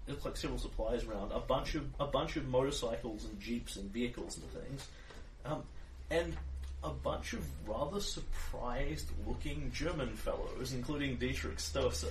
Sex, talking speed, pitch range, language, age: male, 150 wpm, 110-145 Hz, English, 30-49